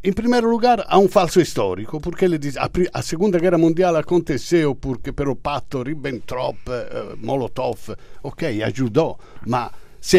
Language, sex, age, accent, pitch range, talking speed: Portuguese, male, 50-69, Italian, 140-190 Hz, 160 wpm